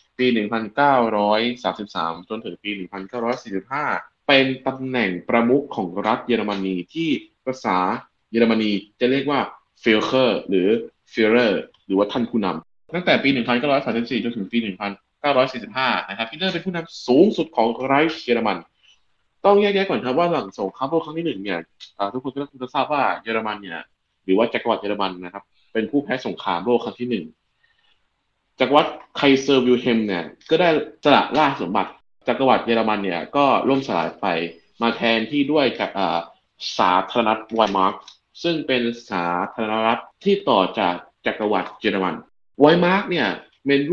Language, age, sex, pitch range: Thai, 20-39, male, 100-135 Hz